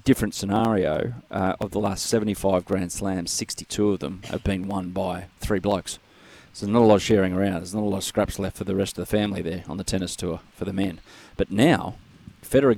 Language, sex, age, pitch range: English, male, 30-49, 95-105 Hz